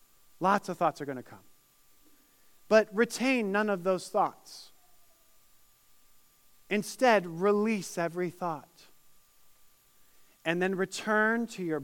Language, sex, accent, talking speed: English, male, American, 110 wpm